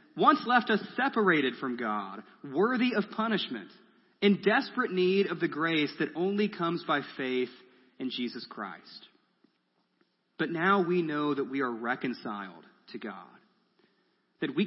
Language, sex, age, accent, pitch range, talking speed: English, male, 30-49, American, 130-180 Hz, 145 wpm